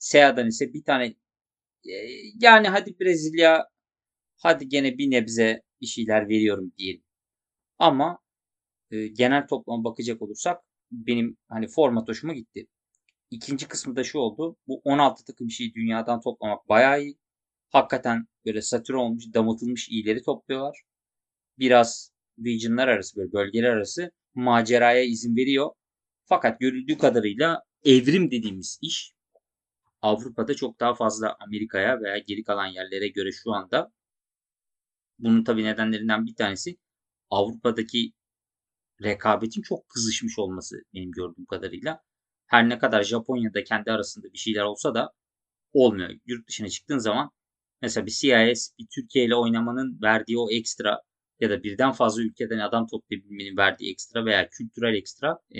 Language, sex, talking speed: Turkish, male, 130 wpm